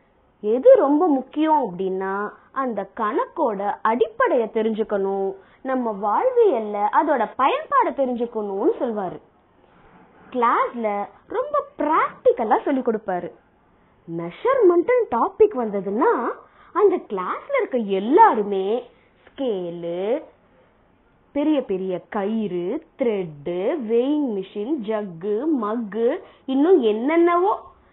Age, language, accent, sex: 20-39, Tamil, native, female